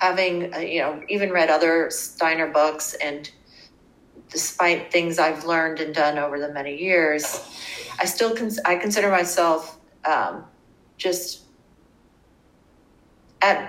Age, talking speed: 40-59, 125 wpm